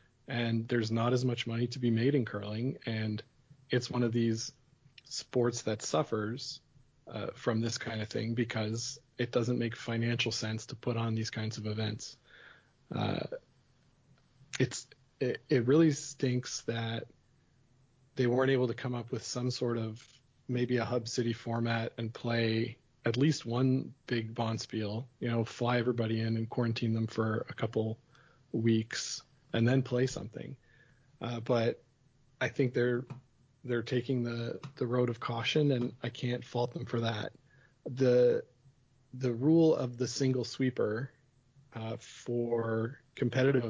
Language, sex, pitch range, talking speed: English, male, 115-135 Hz, 155 wpm